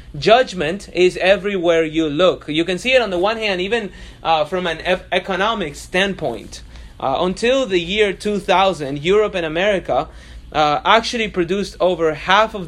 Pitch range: 165-205 Hz